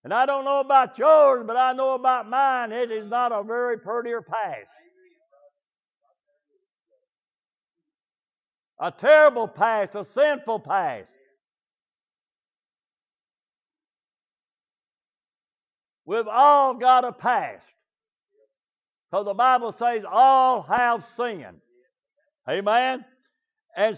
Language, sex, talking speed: English, male, 95 wpm